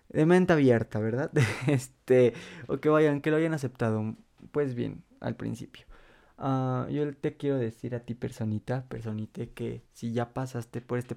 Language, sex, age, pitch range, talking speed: Spanish, male, 20-39, 115-130 Hz, 155 wpm